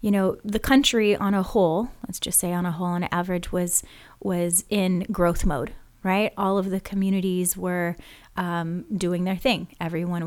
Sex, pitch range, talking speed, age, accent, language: female, 175-210 Hz, 180 wpm, 30-49, American, English